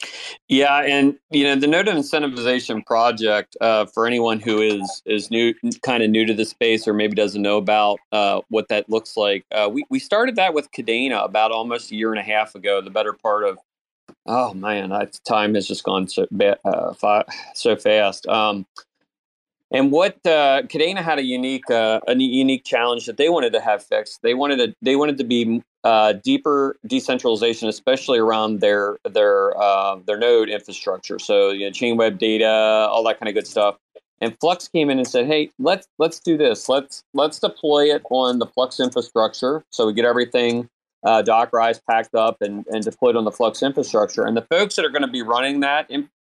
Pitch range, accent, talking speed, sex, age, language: 110-140 Hz, American, 205 wpm, male, 40-59, English